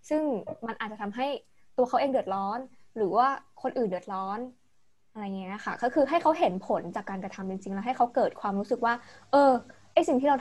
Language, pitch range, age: Thai, 200-255 Hz, 20-39